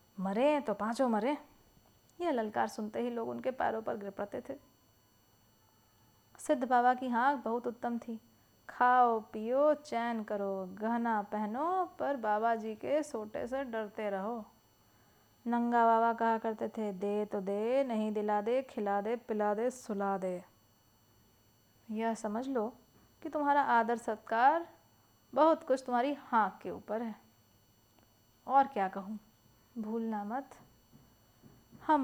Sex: female